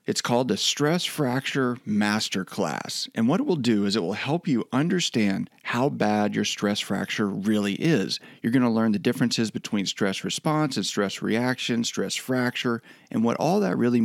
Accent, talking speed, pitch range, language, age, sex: American, 185 wpm, 115-155 Hz, English, 40-59, male